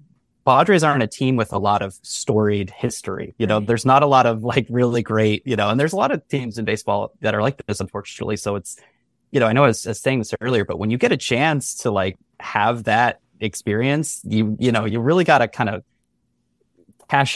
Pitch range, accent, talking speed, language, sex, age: 105-130 Hz, American, 235 wpm, English, male, 20-39